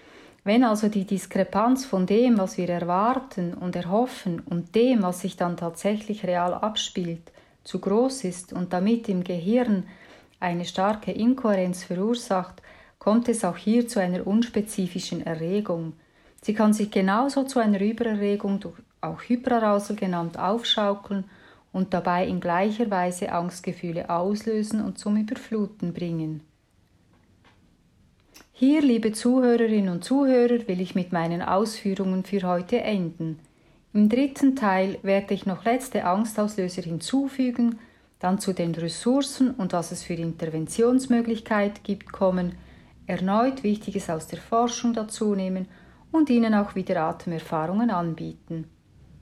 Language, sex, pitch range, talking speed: German, female, 180-230 Hz, 130 wpm